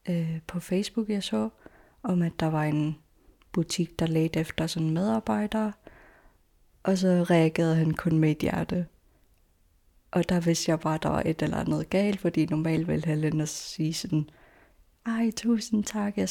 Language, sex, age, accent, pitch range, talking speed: Danish, female, 20-39, native, 155-190 Hz, 175 wpm